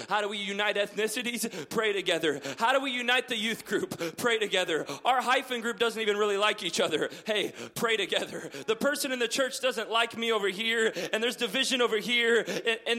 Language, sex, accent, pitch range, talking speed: English, male, American, 225-270 Hz, 205 wpm